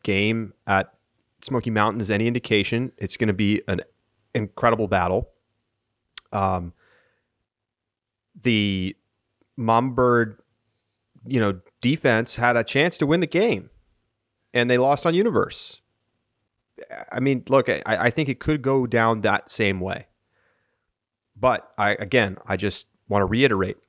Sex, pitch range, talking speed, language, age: male, 105-130 Hz, 130 wpm, English, 30-49